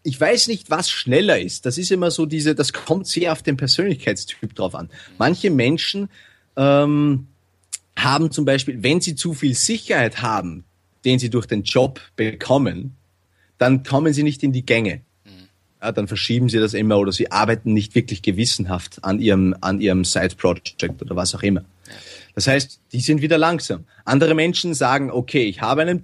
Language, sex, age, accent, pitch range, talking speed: German, male, 30-49, Austrian, 105-150 Hz, 180 wpm